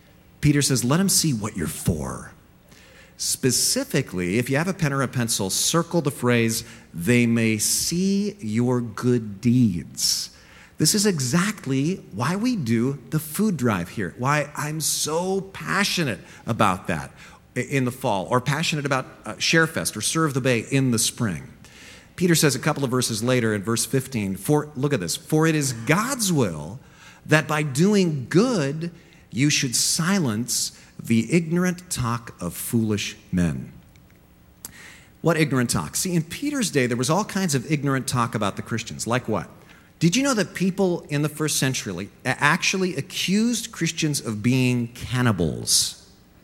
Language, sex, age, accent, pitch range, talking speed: English, male, 40-59, American, 120-170 Hz, 160 wpm